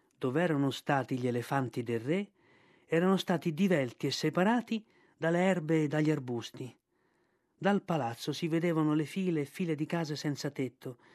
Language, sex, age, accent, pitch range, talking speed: Italian, male, 40-59, native, 135-180 Hz, 155 wpm